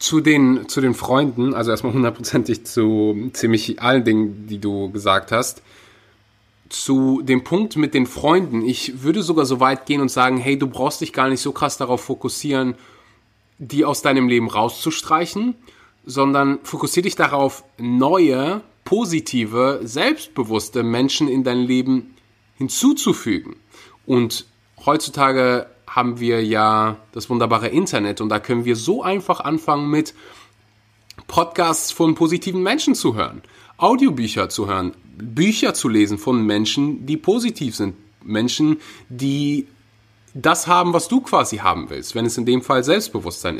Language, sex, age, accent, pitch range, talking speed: German, male, 20-39, German, 110-155 Hz, 145 wpm